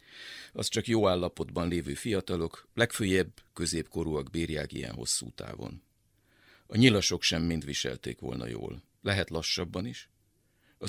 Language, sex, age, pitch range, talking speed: Hungarian, male, 50-69, 85-110 Hz, 125 wpm